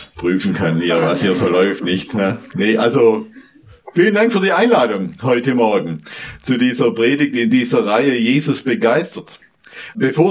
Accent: German